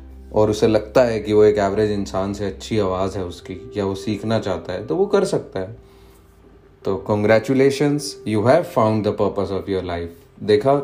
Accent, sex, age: native, male, 30-49